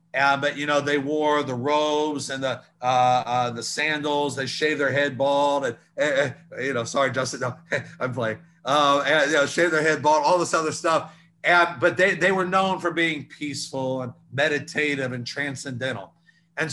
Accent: American